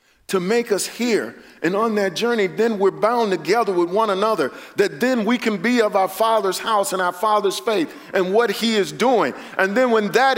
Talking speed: 215 wpm